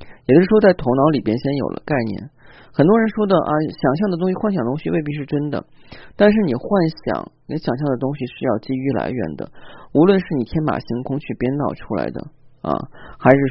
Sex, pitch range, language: male, 115-145 Hz, Chinese